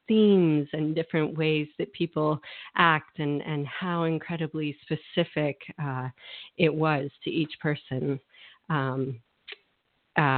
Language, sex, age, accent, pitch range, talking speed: English, female, 30-49, American, 145-175 Hz, 115 wpm